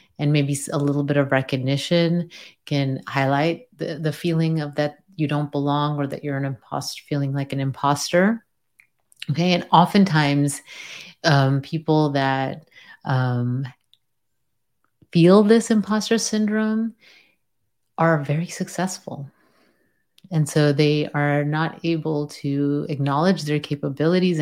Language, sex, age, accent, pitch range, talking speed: English, female, 30-49, American, 140-165 Hz, 125 wpm